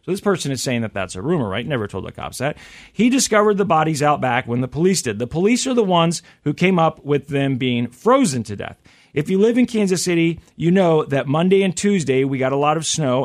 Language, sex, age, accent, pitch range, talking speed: English, male, 40-59, American, 130-175 Hz, 260 wpm